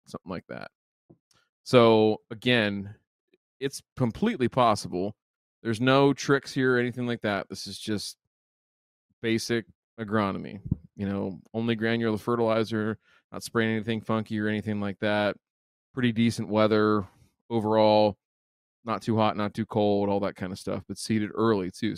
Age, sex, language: 20-39, male, English